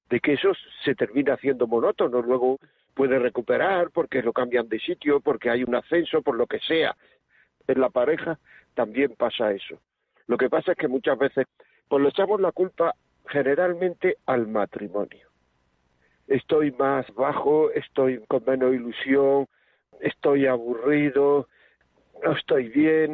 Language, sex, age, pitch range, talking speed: Spanish, male, 60-79, 125-160 Hz, 145 wpm